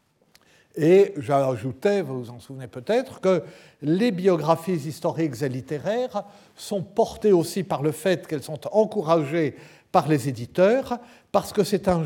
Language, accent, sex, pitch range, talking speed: French, French, male, 140-185 Hz, 145 wpm